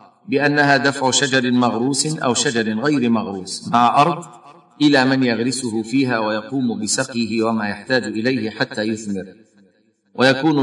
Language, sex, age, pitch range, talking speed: Arabic, male, 50-69, 115-140 Hz, 125 wpm